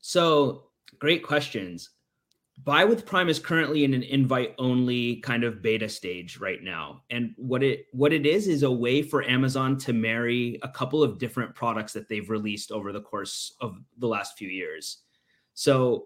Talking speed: 180 wpm